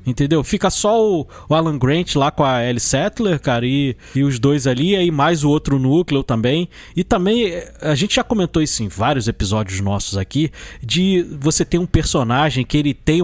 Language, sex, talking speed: Portuguese, male, 200 wpm